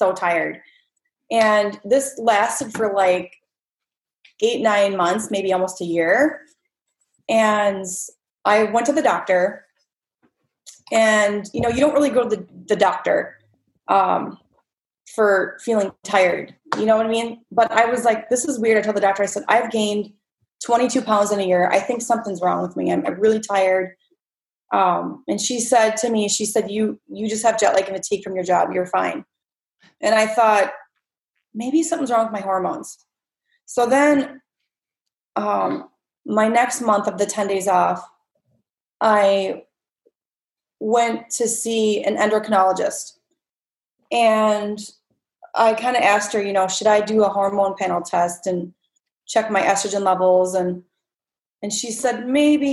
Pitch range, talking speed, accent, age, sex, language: 195-235 Hz, 160 wpm, American, 20-39, female, English